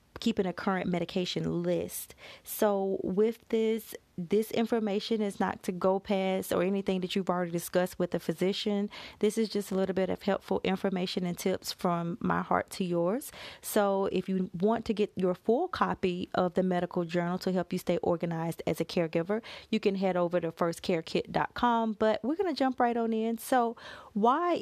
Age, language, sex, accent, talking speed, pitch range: 30-49, English, female, American, 190 wpm, 185-220 Hz